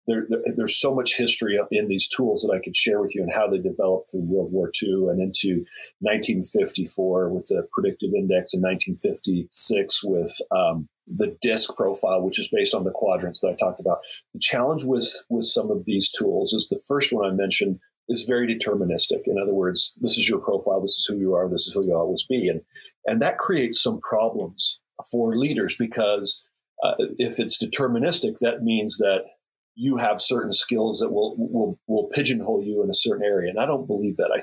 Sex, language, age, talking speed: male, English, 40-59, 205 wpm